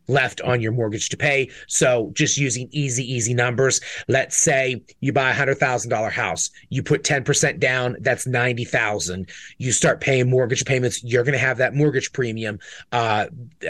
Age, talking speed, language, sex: 30-49, 165 wpm, English, male